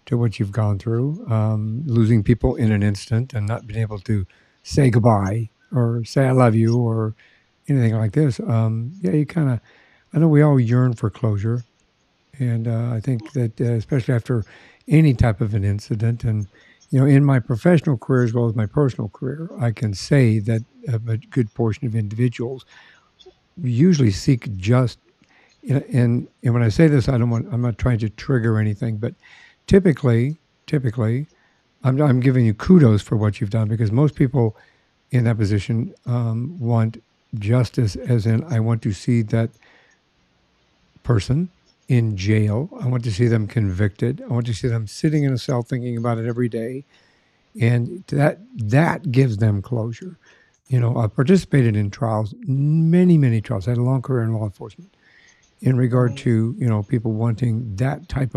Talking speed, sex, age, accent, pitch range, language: 180 wpm, male, 60-79, American, 115-135 Hz, English